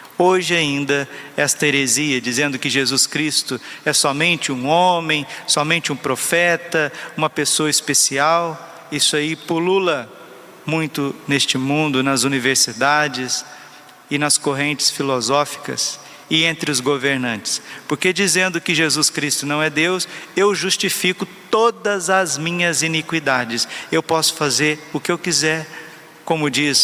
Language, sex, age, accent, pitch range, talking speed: Portuguese, male, 50-69, Brazilian, 140-165 Hz, 125 wpm